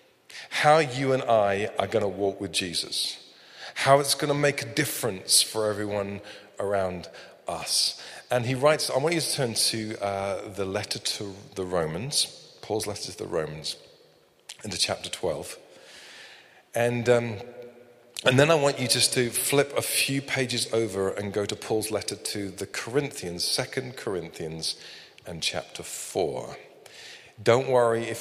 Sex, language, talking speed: male, English, 155 wpm